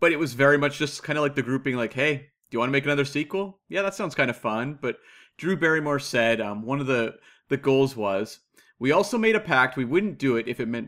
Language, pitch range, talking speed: English, 120-170 Hz, 275 wpm